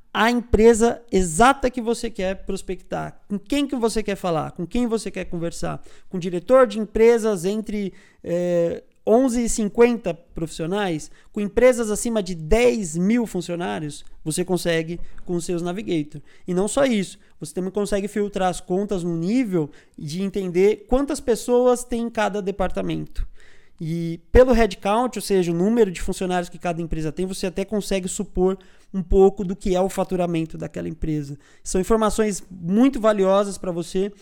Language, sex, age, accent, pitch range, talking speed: Portuguese, male, 20-39, Brazilian, 170-210 Hz, 160 wpm